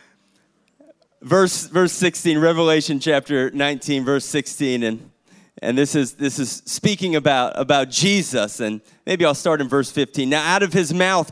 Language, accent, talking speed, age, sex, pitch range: English, American, 160 wpm, 30-49, male, 140-185 Hz